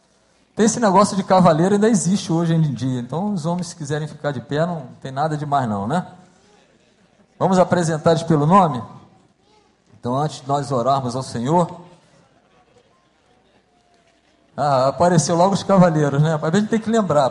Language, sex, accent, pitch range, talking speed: Portuguese, male, Brazilian, 145-190 Hz, 165 wpm